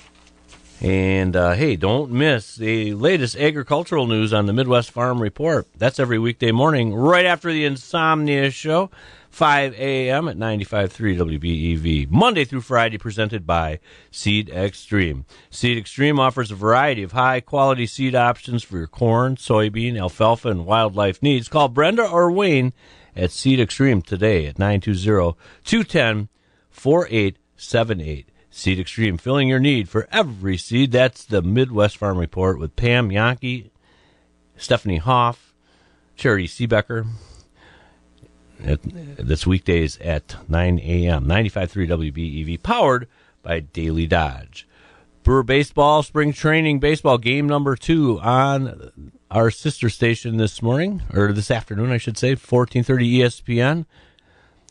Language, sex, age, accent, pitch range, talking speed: English, male, 40-59, American, 95-130 Hz, 125 wpm